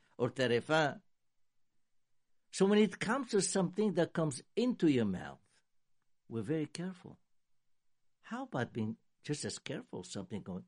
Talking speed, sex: 135 wpm, male